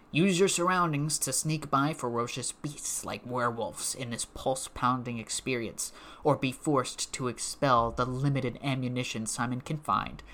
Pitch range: 115-140 Hz